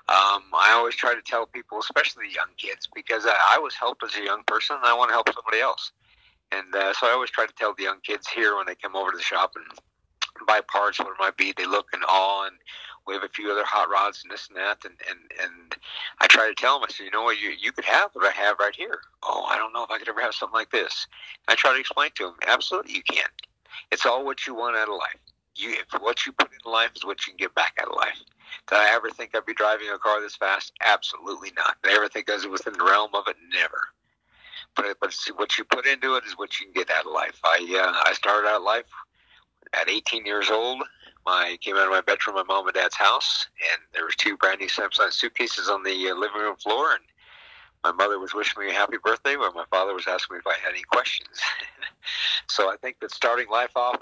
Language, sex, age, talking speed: English, male, 50-69, 265 wpm